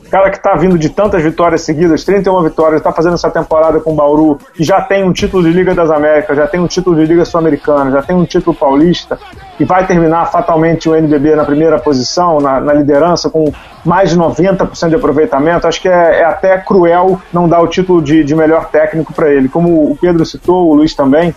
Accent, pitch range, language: Brazilian, 155-180 Hz, Portuguese